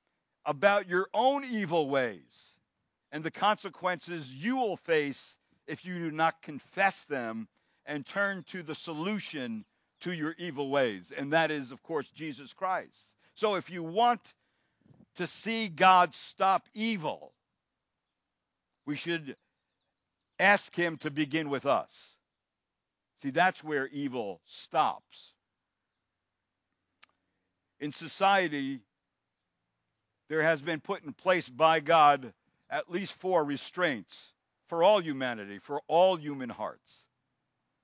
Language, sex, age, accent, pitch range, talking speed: English, male, 60-79, American, 140-195 Hz, 120 wpm